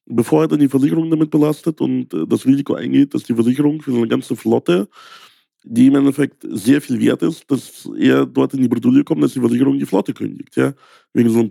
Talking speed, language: 225 wpm, German